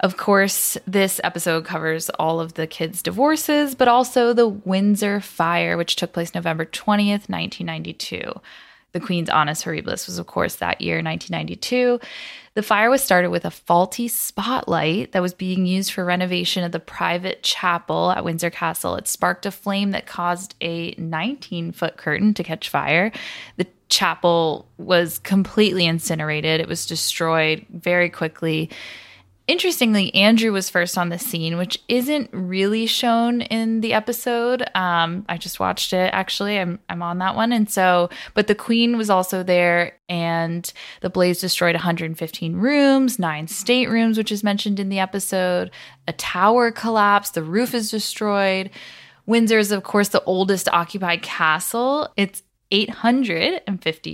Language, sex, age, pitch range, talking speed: English, female, 20-39, 170-220 Hz, 155 wpm